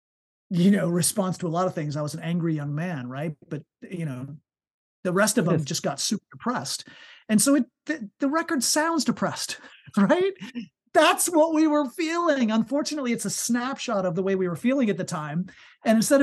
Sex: male